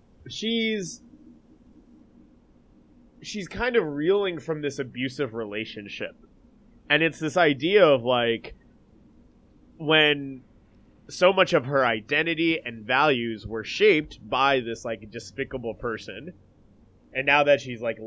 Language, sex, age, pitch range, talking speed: English, male, 20-39, 115-155 Hz, 115 wpm